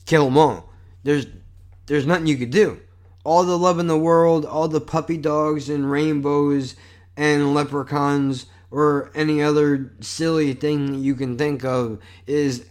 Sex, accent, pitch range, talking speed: male, American, 115-150 Hz, 155 wpm